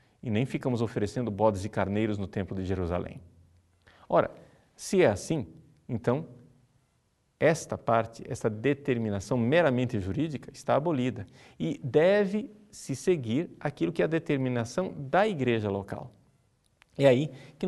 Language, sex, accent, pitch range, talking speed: Portuguese, male, Brazilian, 110-150 Hz, 130 wpm